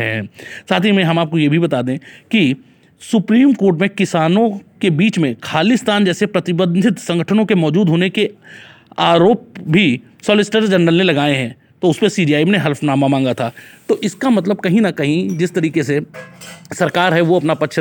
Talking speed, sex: 180 wpm, male